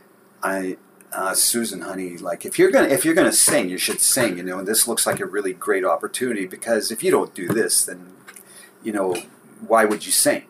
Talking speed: 215 wpm